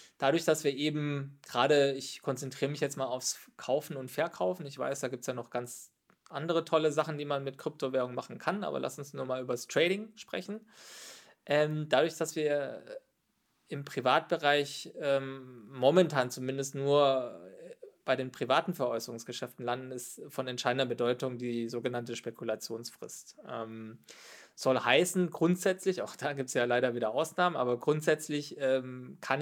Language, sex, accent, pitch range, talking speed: German, male, German, 125-155 Hz, 160 wpm